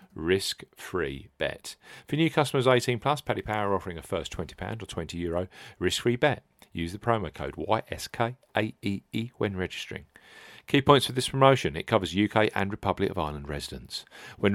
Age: 40-59